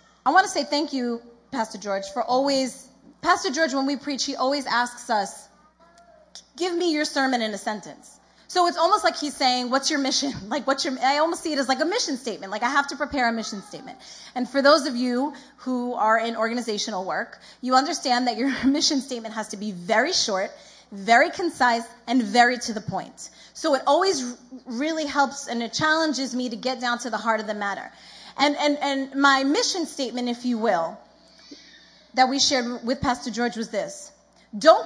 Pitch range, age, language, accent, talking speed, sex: 245-310 Hz, 30-49, English, American, 205 wpm, female